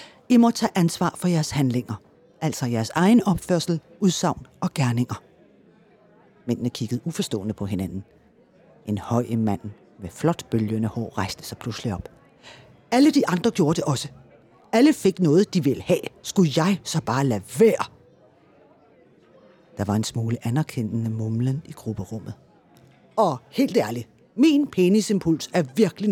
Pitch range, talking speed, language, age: 110-170 Hz, 145 wpm, Danish, 40-59